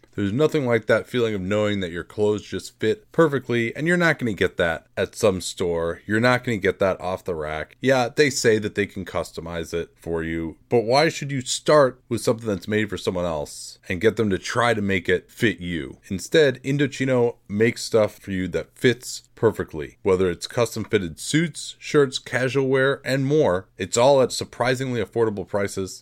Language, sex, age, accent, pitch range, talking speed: English, male, 30-49, American, 100-130 Hz, 205 wpm